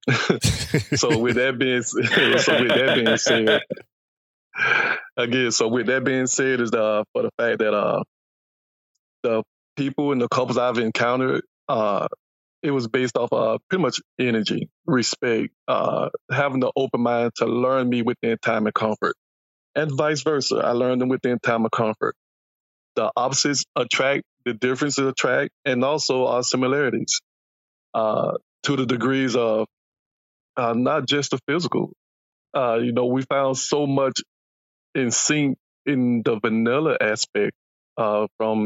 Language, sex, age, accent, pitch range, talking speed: English, male, 20-39, American, 115-135 Hz, 150 wpm